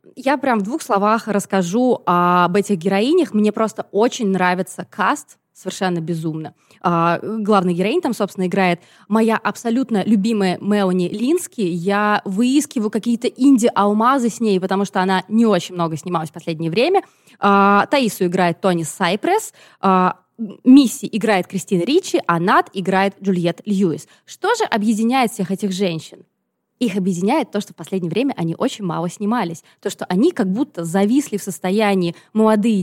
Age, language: 20-39, Russian